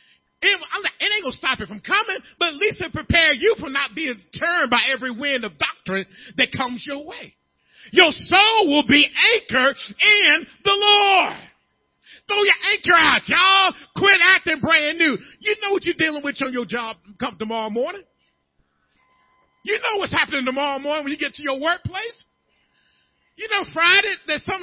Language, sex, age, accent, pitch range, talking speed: English, male, 40-59, American, 260-385 Hz, 180 wpm